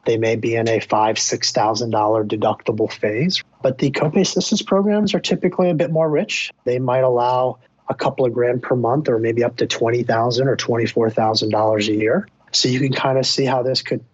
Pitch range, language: 110-130 Hz, English